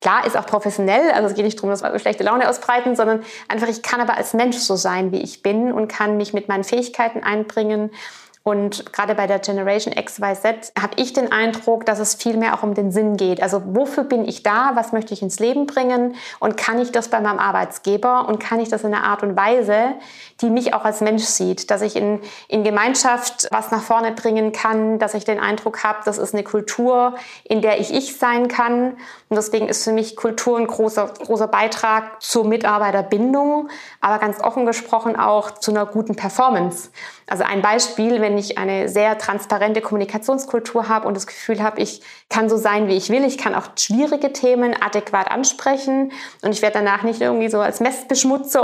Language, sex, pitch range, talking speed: German, female, 210-240 Hz, 210 wpm